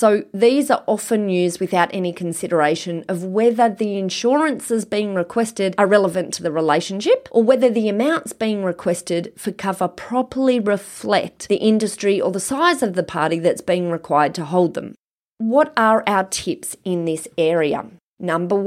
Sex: female